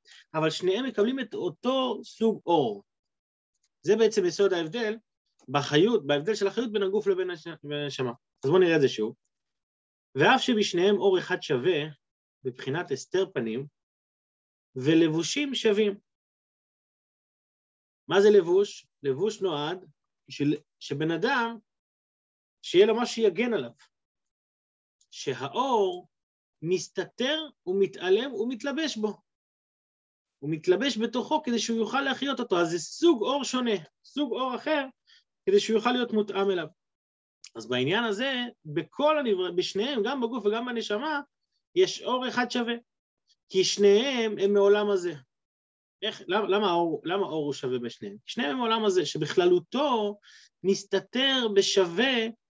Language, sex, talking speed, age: Hebrew, male, 125 wpm, 30-49